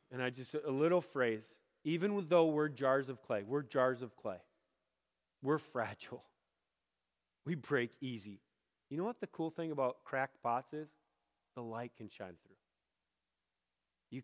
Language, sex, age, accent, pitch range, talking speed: English, male, 30-49, American, 125-200 Hz, 155 wpm